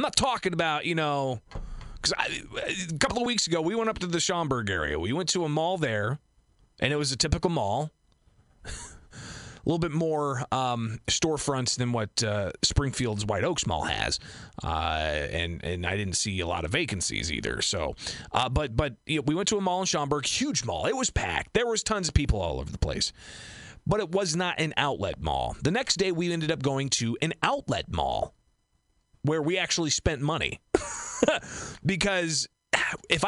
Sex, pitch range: male, 115-175 Hz